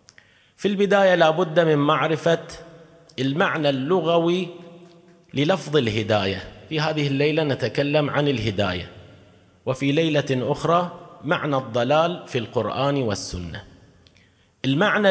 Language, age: Arabic, 30-49